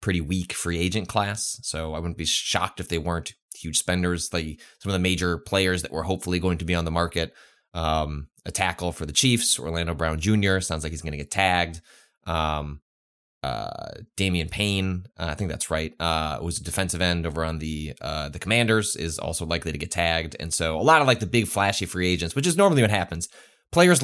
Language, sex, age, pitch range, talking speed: English, male, 20-39, 80-100 Hz, 220 wpm